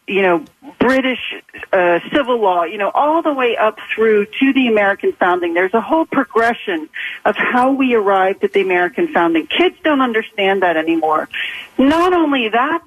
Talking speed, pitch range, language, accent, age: 175 wpm, 200-275 Hz, English, American, 40-59